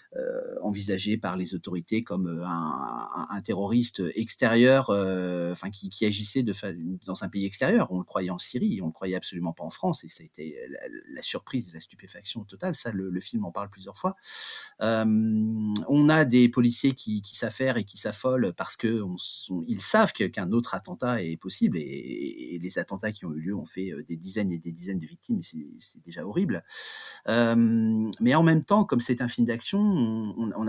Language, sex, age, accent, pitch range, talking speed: French, male, 30-49, French, 100-130 Hz, 210 wpm